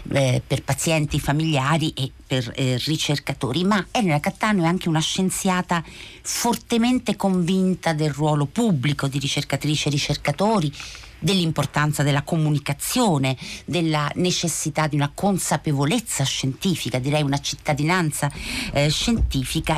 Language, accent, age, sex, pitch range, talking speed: Italian, native, 50-69, female, 135-180 Hz, 115 wpm